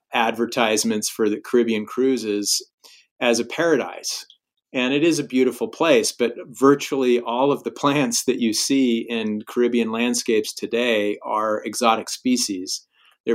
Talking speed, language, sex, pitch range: 140 wpm, English, male, 110-125 Hz